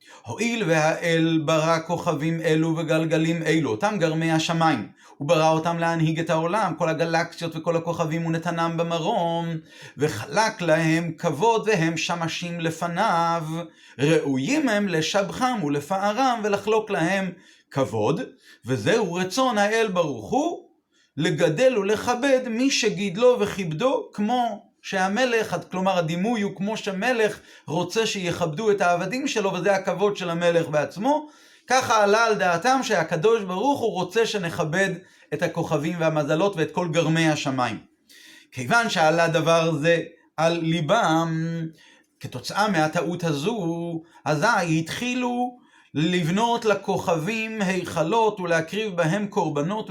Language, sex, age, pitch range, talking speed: Hebrew, male, 30-49, 160-220 Hz, 115 wpm